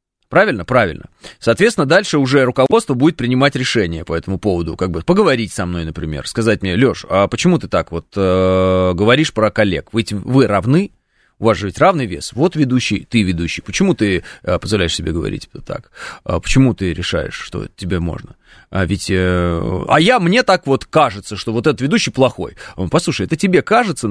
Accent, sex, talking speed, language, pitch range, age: native, male, 190 wpm, Russian, 90-150 Hz, 30-49